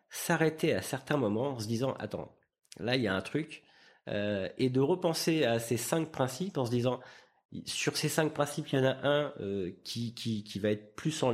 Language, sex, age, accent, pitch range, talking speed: French, male, 40-59, French, 110-155 Hz, 240 wpm